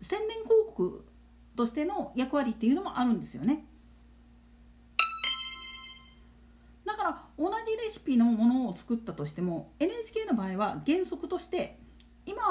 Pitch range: 205-335 Hz